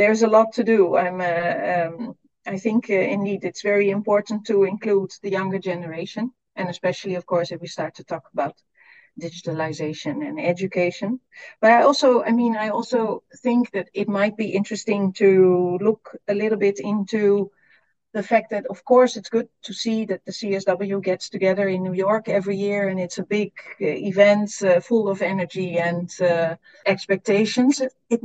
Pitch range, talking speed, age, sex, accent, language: 180-220 Hz, 180 wpm, 40-59, female, Dutch, English